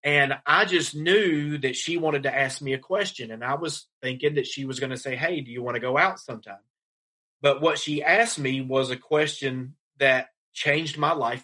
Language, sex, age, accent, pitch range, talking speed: English, male, 30-49, American, 130-160 Hz, 220 wpm